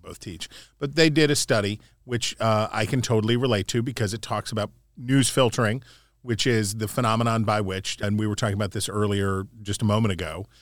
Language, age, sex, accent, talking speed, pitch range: English, 40-59, male, American, 210 wpm, 100-120 Hz